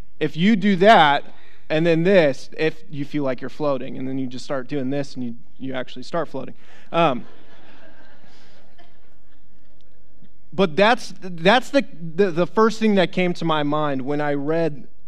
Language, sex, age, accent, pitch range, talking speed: English, male, 20-39, American, 125-180 Hz, 170 wpm